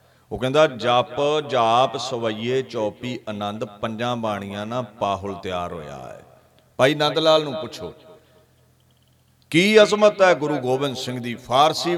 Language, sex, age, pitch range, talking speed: Punjabi, male, 50-69, 115-165 Hz, 130 wpm